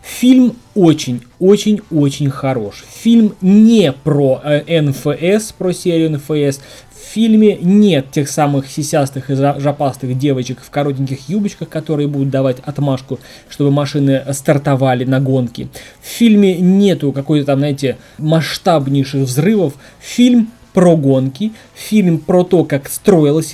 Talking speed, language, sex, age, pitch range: 125 wpm, Russian, male, 20-39, 135-170 Hz